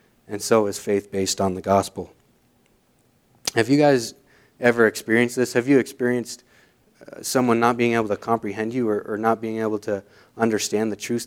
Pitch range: 100-115 Hz